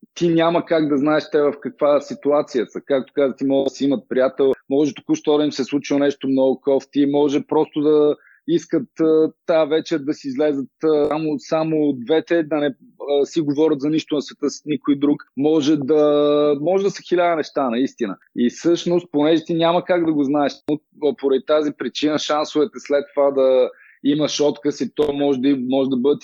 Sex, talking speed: male, 190 wpm